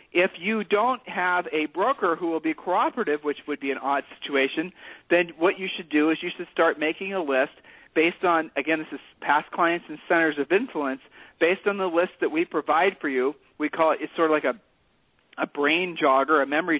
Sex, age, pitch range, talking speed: male, 40-59, 150-185 Hz, 220 wpm